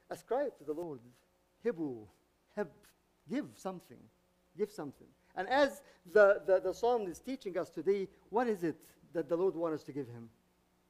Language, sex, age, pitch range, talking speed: English, male, 50-69, 140-210 Hz, 160 wpm